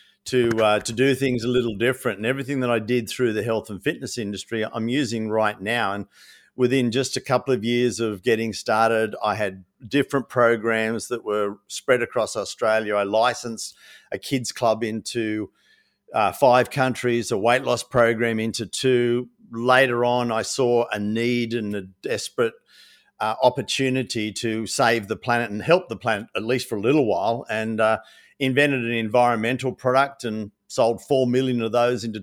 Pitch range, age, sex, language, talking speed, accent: 110-125 Hz, 50-69, male, English, 175 wpm, Australian